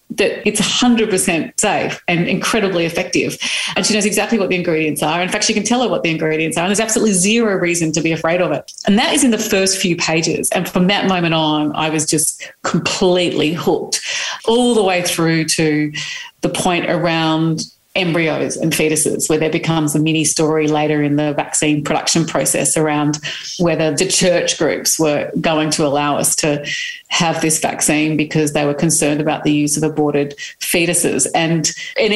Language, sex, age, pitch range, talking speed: English, female, 30-49, 155-195 Hz, 190 wpm